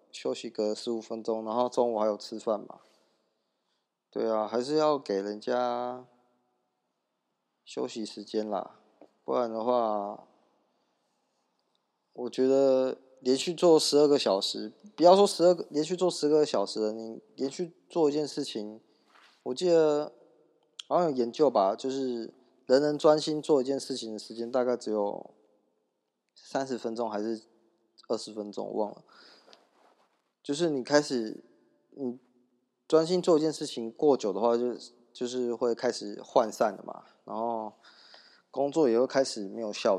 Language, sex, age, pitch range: Chinese, male, 20-39, 110-145 Hz